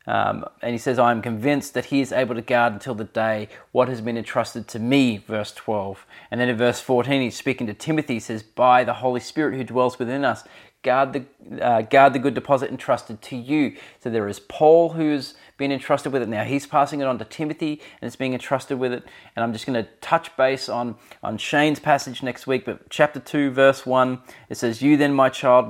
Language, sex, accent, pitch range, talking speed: English, male, Australian, 115-135 Hz, 230 wpm